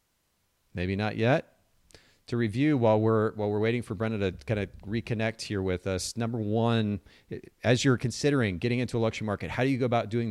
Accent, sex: American, male